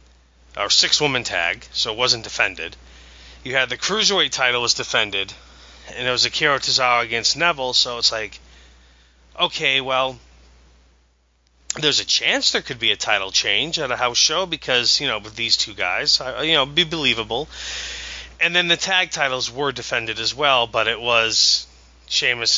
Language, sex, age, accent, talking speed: English, male, 30-49, American, 170 wpm